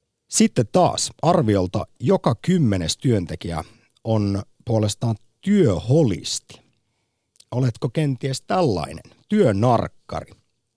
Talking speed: 70 wpm